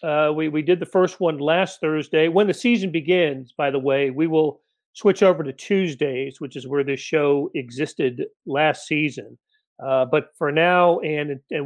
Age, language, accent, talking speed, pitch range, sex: 40-59, English, American, 185 wpm, 140-180 Hz, male